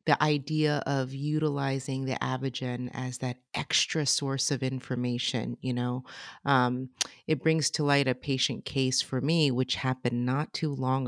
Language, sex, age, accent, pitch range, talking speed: English, female, 30-49, American, 125-155 Hz, 155 wpm